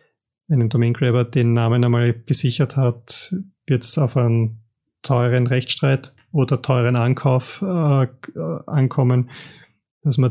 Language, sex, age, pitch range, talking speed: German, male, 30-49, 120-135 Hz, 120 wpm